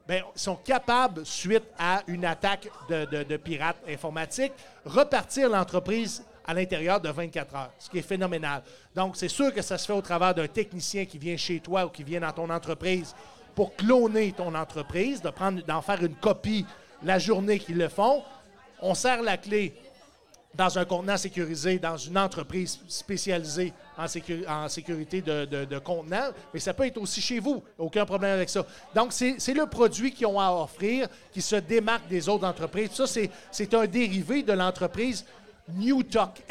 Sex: male